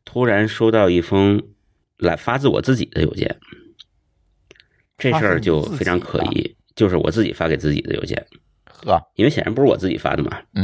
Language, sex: Chinese, male